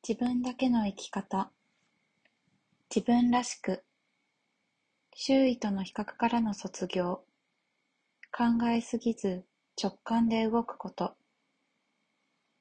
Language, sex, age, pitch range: Japanese, female, 20-39, 195-240 Hz